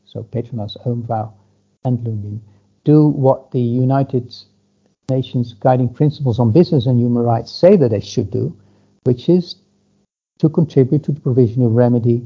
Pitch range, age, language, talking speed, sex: 115-140 Hz, 60-79, English, 150 wpm, male